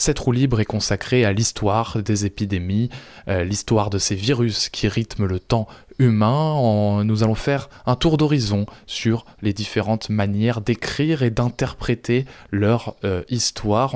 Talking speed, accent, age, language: 150 wpm, French, 20-39, French